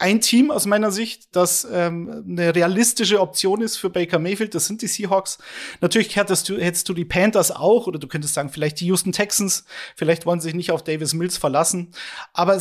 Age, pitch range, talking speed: 30-49, 160-190 Hz, 205 wpm